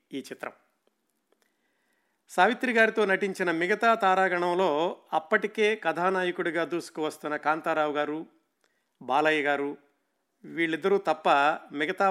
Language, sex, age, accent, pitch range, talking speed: Telugu, male, 50-69, native, 150-195 Hz, 85 wpm